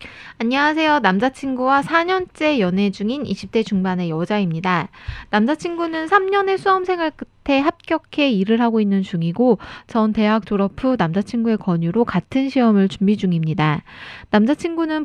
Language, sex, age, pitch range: Korean, female, 20-39, 180-260 Hz